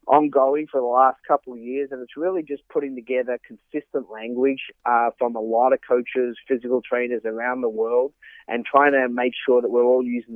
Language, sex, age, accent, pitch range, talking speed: English, male, 30-49, Australian, 120-135 Hz, 205 wpm